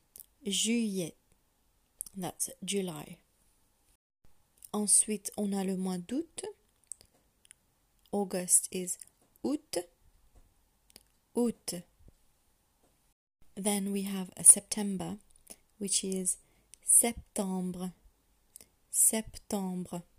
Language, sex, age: French, female, 30-49